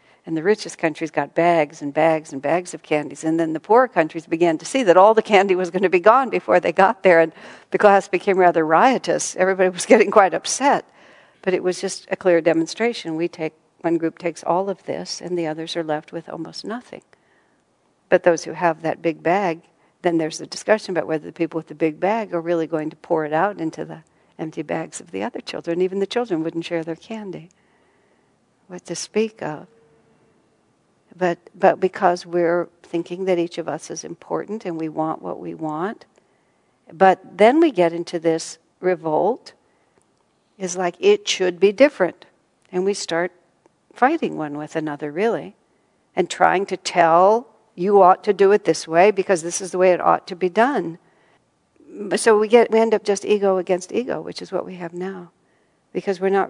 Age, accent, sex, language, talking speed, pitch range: 60-79, American, female, English, 200 wpm, 165-195 Hz